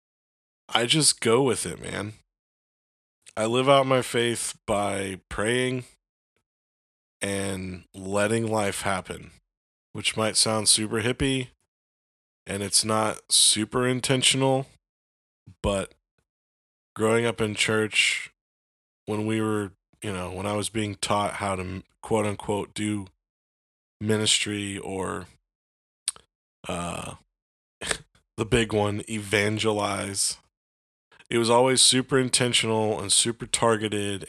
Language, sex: English, male